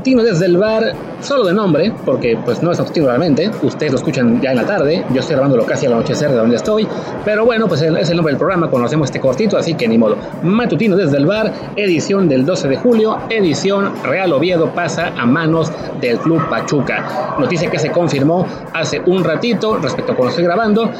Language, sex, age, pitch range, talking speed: Spanish, male, 30-49, 165-215 Hz, 210 wpm